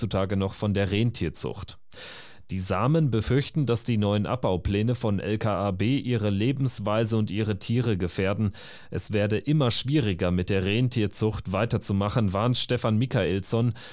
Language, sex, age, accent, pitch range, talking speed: German, male, 30-49, German, 100-115 Hz, 130 wpm